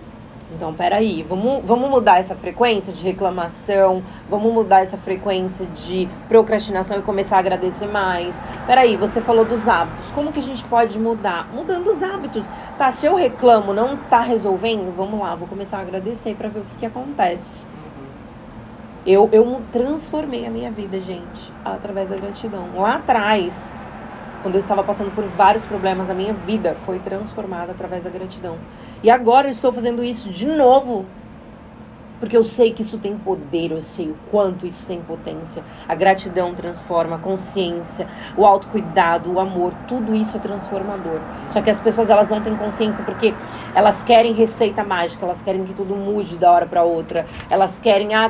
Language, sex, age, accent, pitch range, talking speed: Portuguese, female, 20-39, Brazilian, 185-220 Hz, 175 wpm